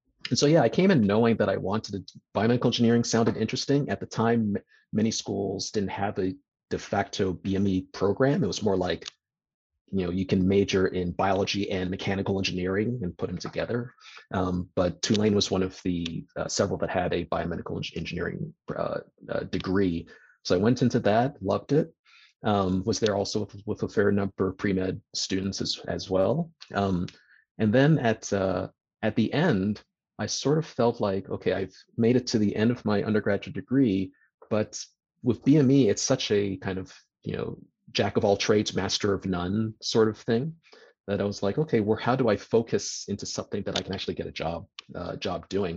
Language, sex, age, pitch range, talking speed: English, male, 30-49, 95-115 Hz, 200 wpm